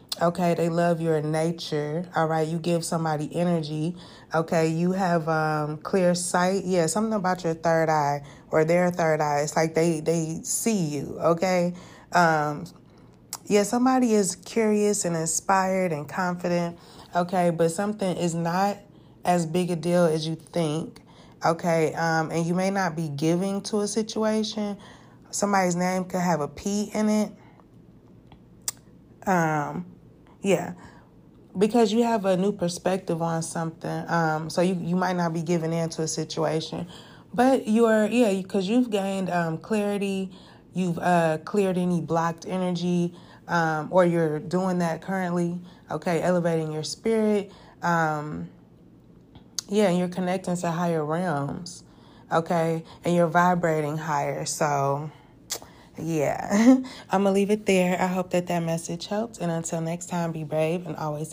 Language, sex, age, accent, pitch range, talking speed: English, female, 20-39, American, 160-190 Hz, 155 wpm